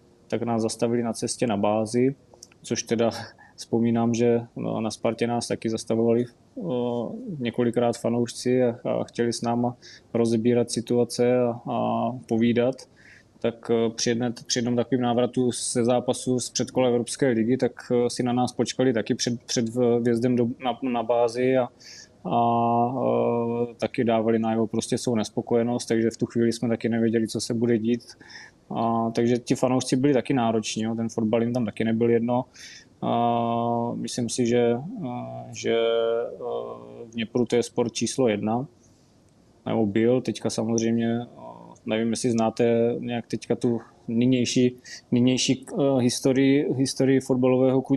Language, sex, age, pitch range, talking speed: Czech, male, 20-39, 115-125 Hz, 145 wpm